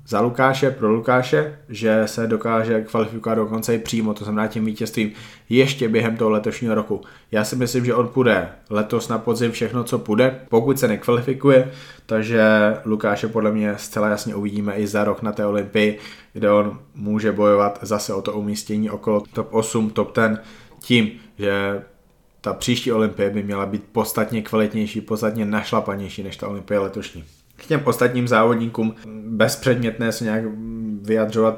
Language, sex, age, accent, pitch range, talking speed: Czech, male, 20-39, native, 105-115 Hz, 160 wpm